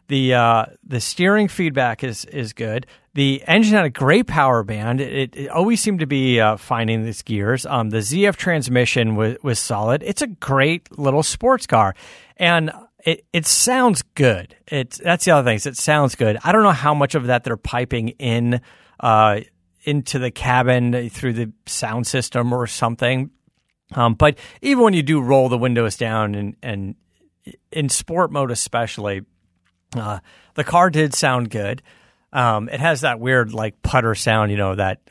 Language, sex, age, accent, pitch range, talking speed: English, male, 40-59, American, 110-155 Hz, 180 wpm